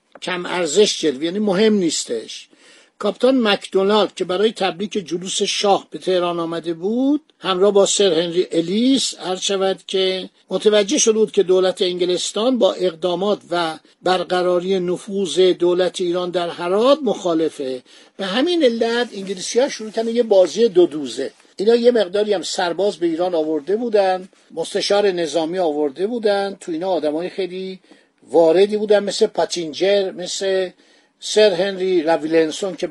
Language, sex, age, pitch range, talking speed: Persian, male, 50-69, 180-225 Hz, 135 wpm